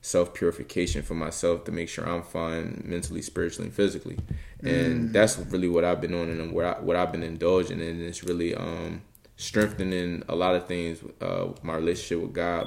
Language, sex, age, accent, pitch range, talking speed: English, male, 20-39, American, 80-95 Hz, 185 wpm